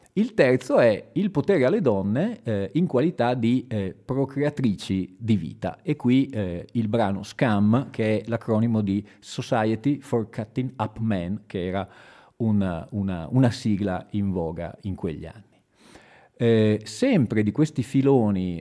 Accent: native